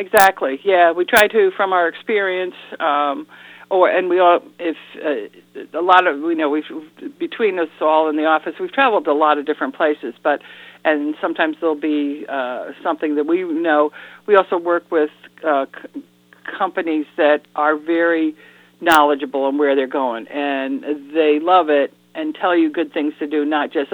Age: 50-69